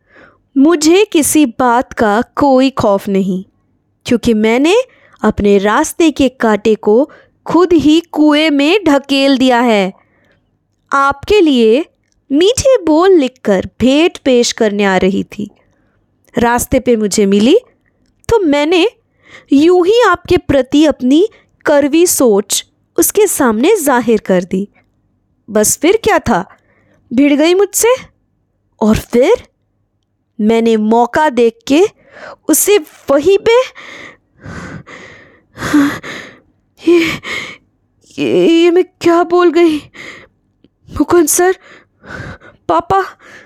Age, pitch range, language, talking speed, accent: 20-39, 255-375 Hz, Hindi, 105 wpm, native